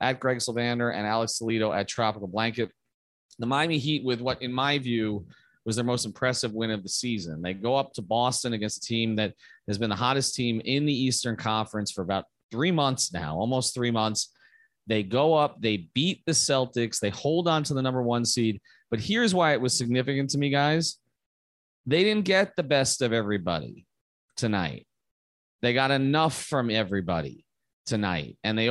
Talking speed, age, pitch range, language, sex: 190 wpm, 30-49, 110-135 Hz, English, male